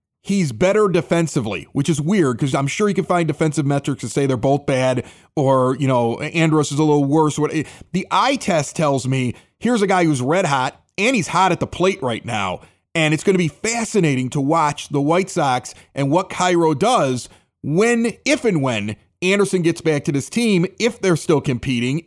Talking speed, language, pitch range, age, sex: 205 wpm, English, 135-190 Hz, 30-49, male